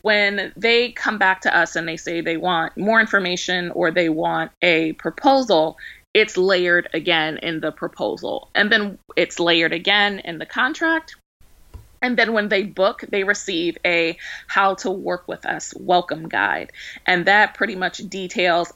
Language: English